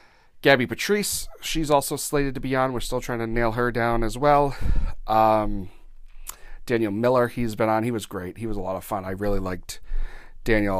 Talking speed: 200 wpm